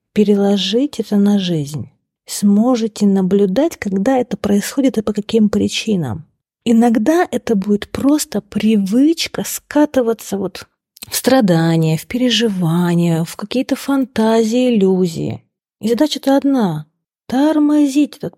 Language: Russian